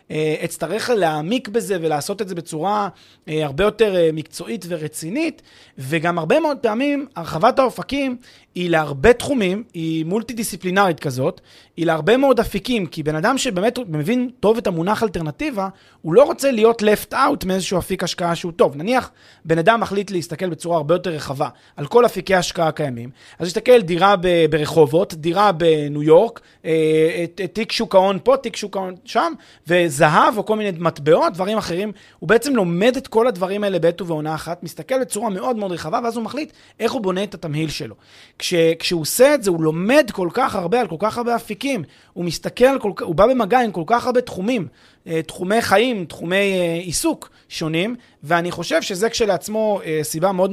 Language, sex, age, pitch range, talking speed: Hebrew, male, 30-49, 165-230 Hz, 170 wpm